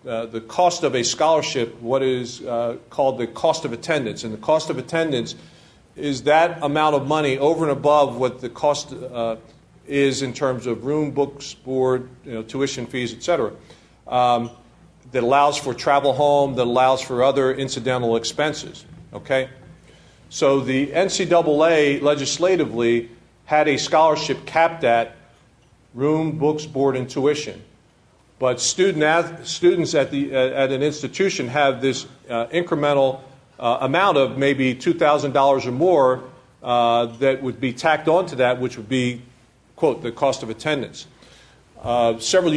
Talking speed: 150 wpm